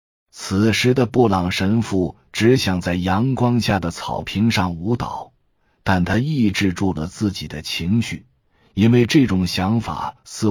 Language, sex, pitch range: Chinese, male, 90-115 Hz